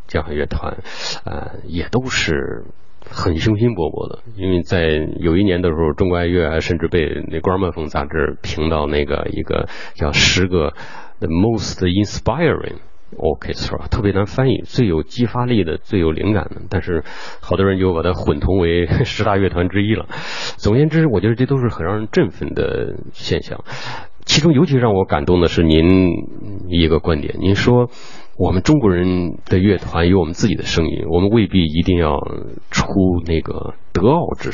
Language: Chinese